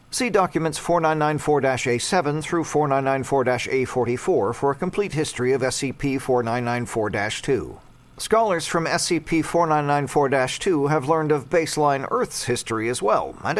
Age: 50-69